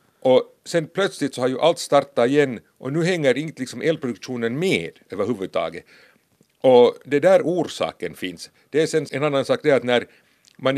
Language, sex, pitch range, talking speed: Swedish, male, 125-155 Hz, 180 wpm